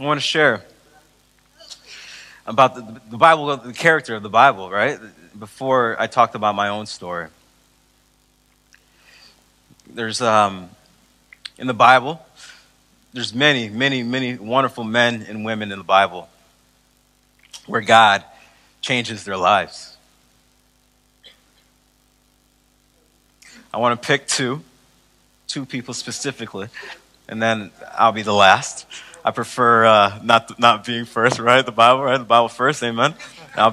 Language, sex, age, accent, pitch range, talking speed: English, male, 30-49, American, 100-125 Hz, 125 wpm